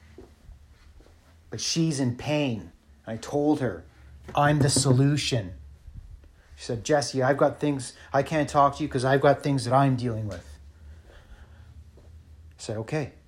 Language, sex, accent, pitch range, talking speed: English, male, American, 80-130 Hz, 145 wpm